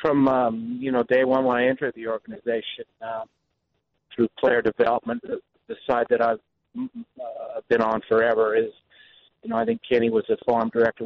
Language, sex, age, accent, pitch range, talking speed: English, male, 50-69, American, 115-130 Hz, 185 wpm